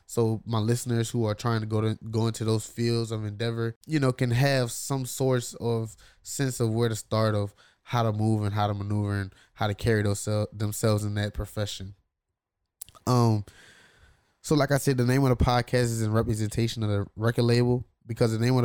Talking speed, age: 210 wpm, 10-29